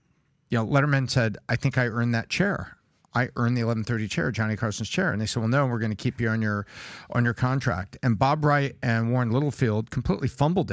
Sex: male